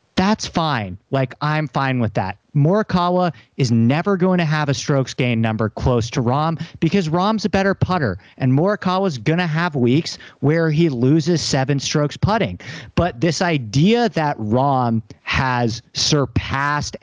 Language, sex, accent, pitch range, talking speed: English, male, American, 130-190 Hz, 155 wpm